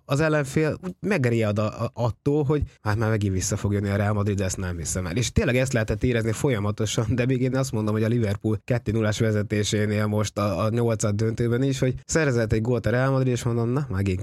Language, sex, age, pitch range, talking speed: English, male, 20-39, 105-140 Hz, 220 wpm